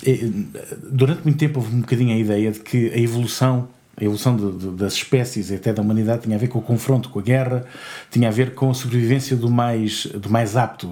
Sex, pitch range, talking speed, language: male, 110-135 Hz, 230 wpm, Portuguese